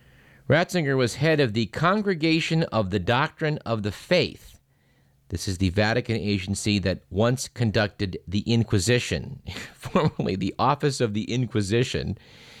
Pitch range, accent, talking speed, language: 105-140 Hz, American, 135 wpm, English